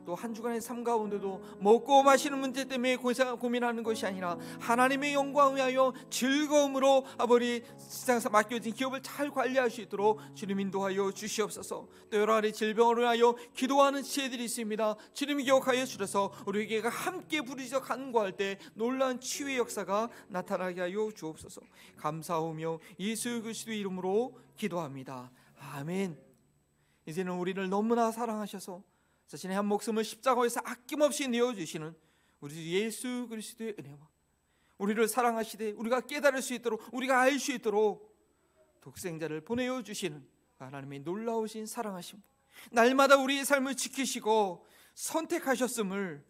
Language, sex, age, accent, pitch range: Korean, male, 40-59, native, 195-260 Hz